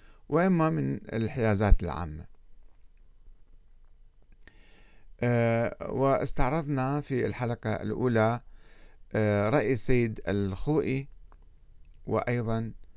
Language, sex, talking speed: Arabic, male, 65 wpm